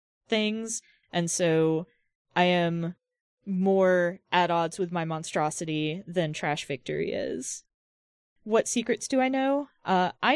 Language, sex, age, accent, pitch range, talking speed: English, female, 20-39, American, 175-210 Hz, 125 wpm